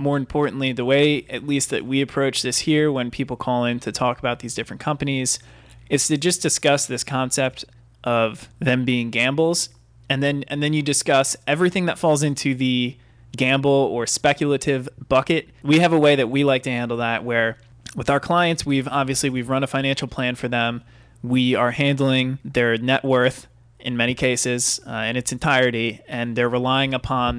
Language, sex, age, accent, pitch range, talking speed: English, male, 20-39, American, 120-140 Hz, 190 wpm